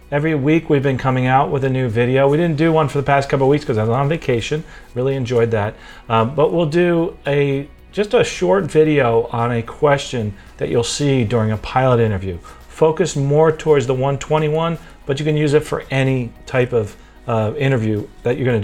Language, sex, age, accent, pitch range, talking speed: English, male, 40-59, American, 120-150 Hz, 215 wpm